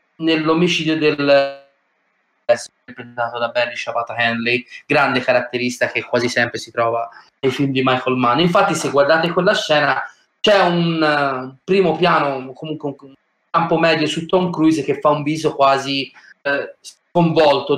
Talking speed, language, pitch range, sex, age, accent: 145 wpm, Italian, 130-160 Hz, male, 30-49, native